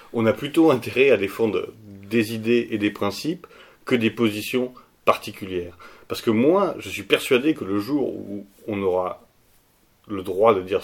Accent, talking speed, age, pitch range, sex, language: French, 170 wpm, 30-49, 100-130 Hz, male, French